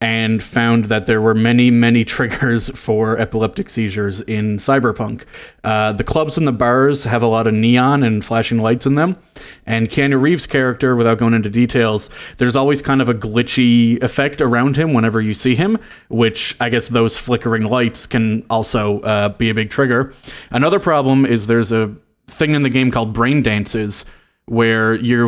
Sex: male